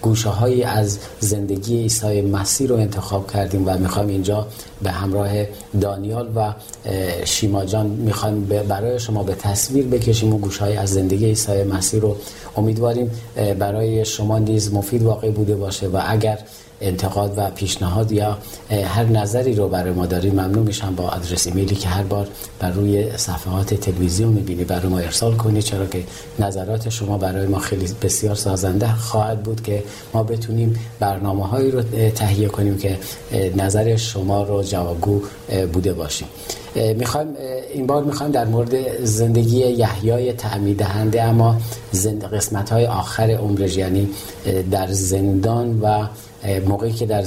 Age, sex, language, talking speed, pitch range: 40-59, male, Persian, 145 wpm, 95-115 Hz